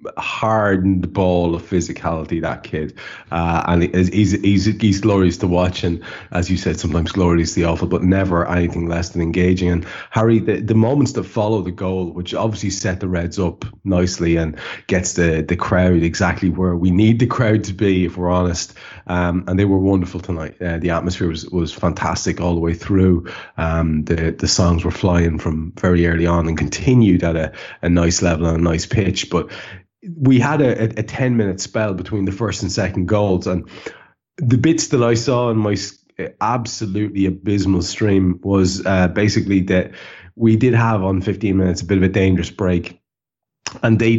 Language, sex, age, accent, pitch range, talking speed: English, male, 30-49, Irish, 90-105 Hz, 190 wpm